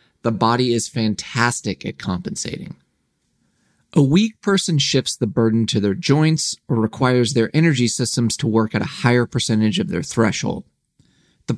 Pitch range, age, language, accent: 110-145 Hz, 30-49, English, American